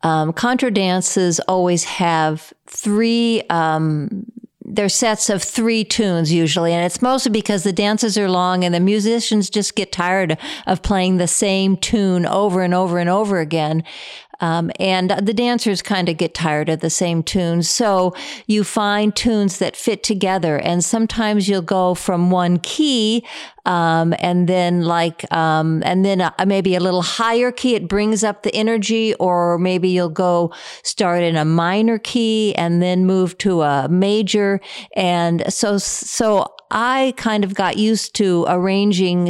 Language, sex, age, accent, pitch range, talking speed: English, female, 50-69, American, 175-215 Hz, 165 wpm